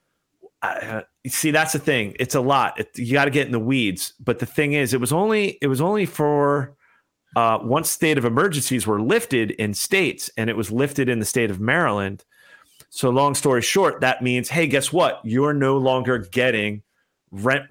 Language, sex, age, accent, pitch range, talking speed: English, male, 30-49, American, 110-140 Hz, 205 wpm